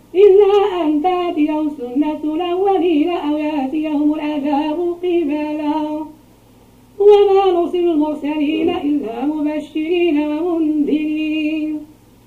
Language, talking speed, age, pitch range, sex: Arabic, 75 wpm, 40-59, 295-350 Hz, female